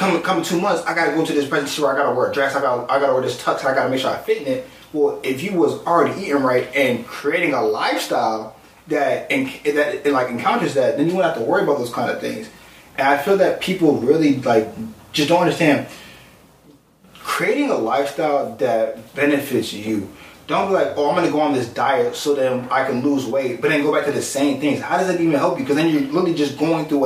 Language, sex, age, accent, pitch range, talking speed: English, male, 20-39, American, 130-170 Hz, 260 wpm